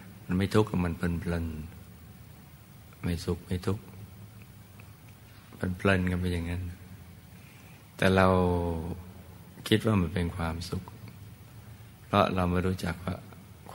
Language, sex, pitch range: Thai, male, 90-105 Hz